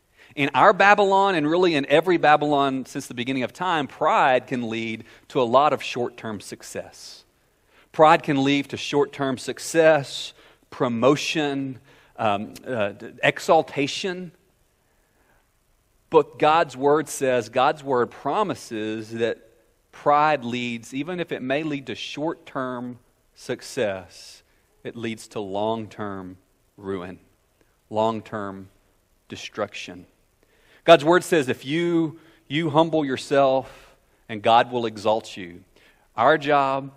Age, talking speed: 40-59, 115 wpm